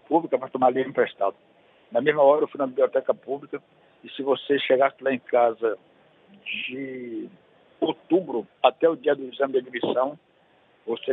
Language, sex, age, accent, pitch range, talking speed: Portuguese, male, 60-79, Brazilian, 120-165 Hz, 155 wpm